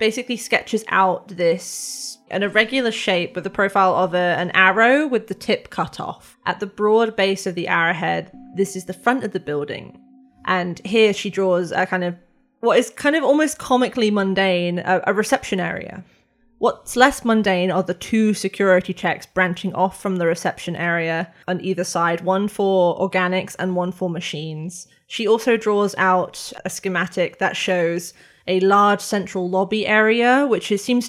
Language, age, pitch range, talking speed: English, 20-39, 185-235 Hz, 170 wpm